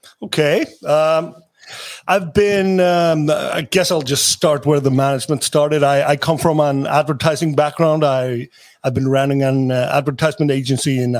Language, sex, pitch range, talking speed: English, male, 130-155 Hz, 155 wpm